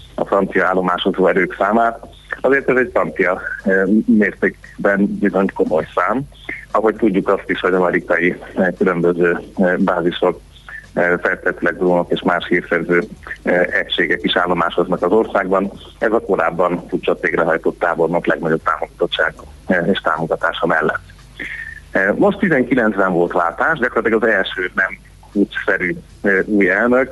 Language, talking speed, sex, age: Hungarian, 115 wpm, male, 30-49